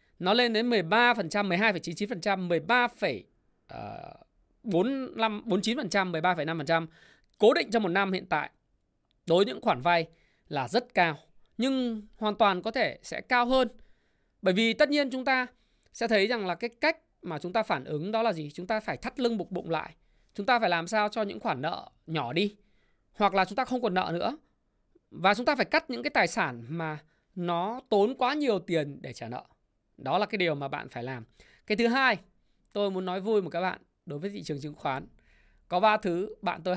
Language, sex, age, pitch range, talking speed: Vietnamese, male, 20-39, 155-220 Hz, 205 wpm